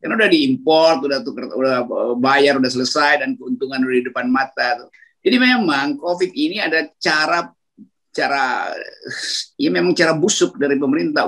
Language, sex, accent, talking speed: Indonesian, male, native, 140 wpm